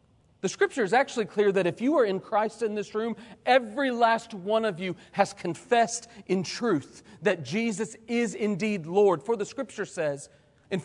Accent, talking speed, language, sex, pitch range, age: American, 185 wpm, English, male, 155-205 Hz, 40-59